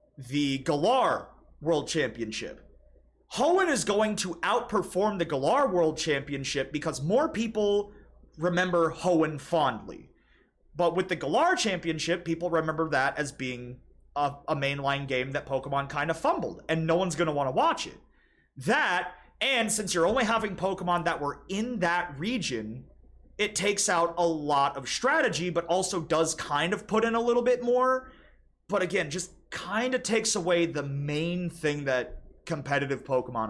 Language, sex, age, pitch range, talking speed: English, male, 30-49, 145-195 Hz, 160 wpm